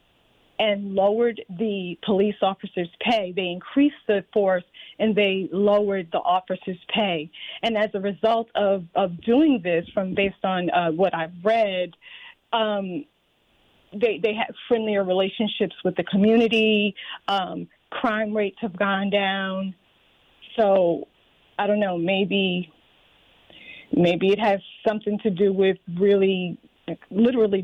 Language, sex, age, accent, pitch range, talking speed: English, female, 40-59, American, 185-215 Hz, 130 wpm